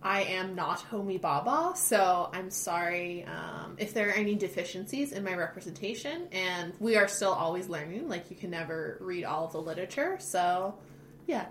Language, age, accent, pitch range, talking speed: English, 20-39, American, 185-235 Hz, 175 wpm